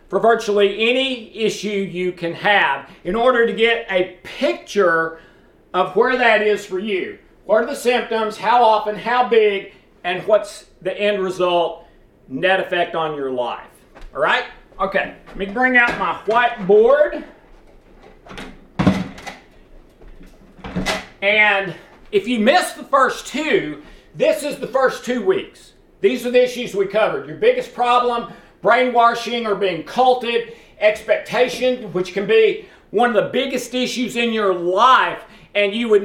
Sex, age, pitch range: male, 40-59, 200-250 Hz